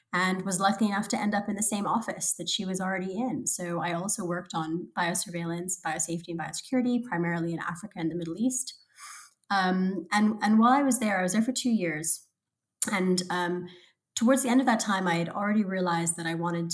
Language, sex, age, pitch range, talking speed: English, female, 20-39, 170-205 Hz, 215 wpm